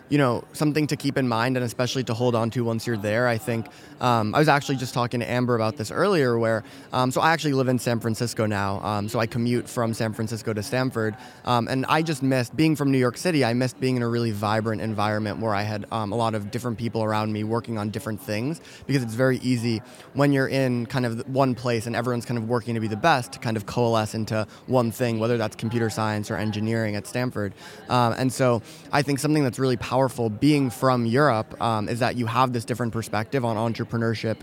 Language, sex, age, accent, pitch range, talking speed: Finnish, male, 20-39, American, 115-130 Hz, 240 wpm